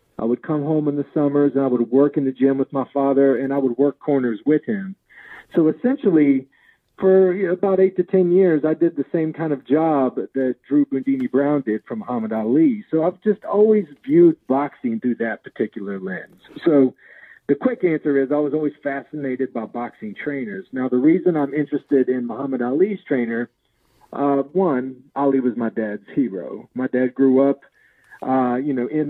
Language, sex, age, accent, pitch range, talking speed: English, male, 40-59, American, 130-155 Hz, 190 wpm